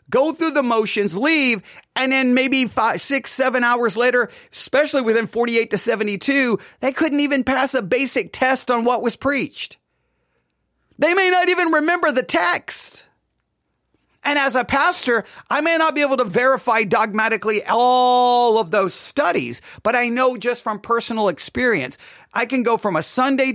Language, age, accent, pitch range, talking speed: English, 40-59, American, 225-285 Hz, 165 wpm